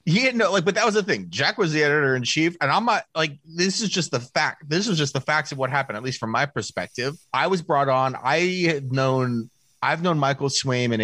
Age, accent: 30-49, American